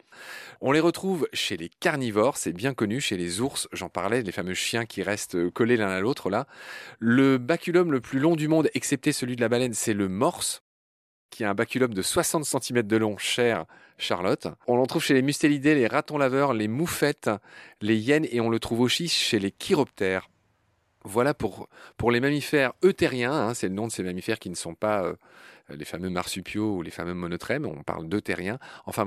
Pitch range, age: 100-140 Hz, 30-49